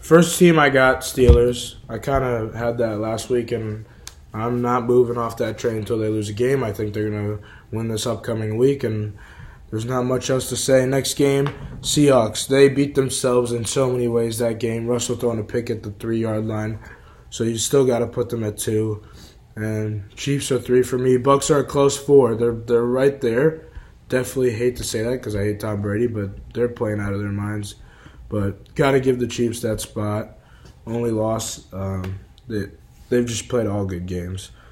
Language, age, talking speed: English, 20-39, 205 wpm